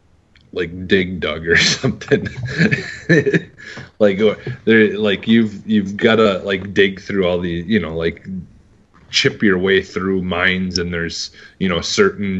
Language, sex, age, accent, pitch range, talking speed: English, male, 30-49, American, 85-100 Hz, 145 wpm